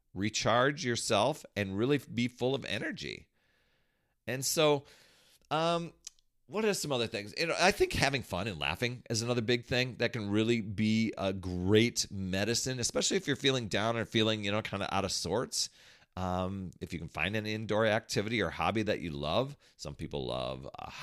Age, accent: 40-59, American